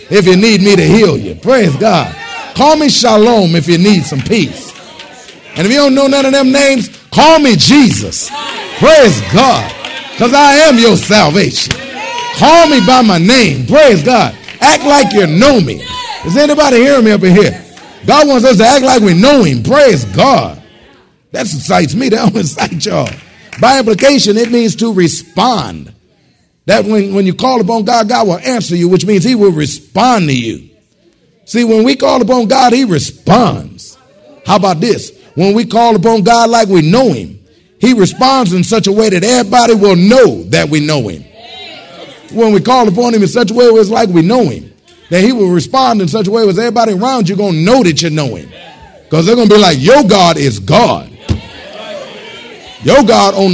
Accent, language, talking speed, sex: American, English, 200 wpm, male